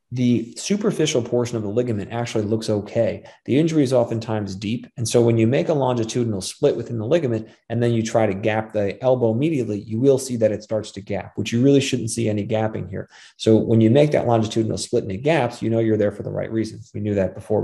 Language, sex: English, male